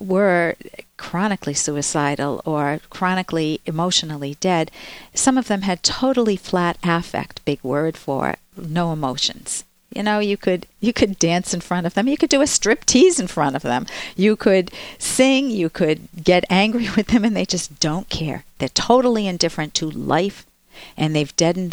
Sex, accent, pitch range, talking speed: female, American, 165-235 Hz, 175 wpm